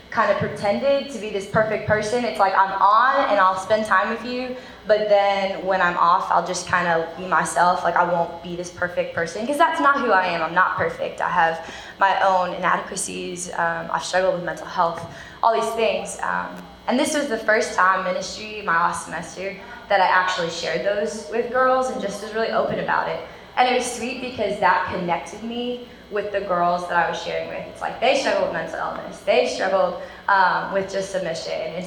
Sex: female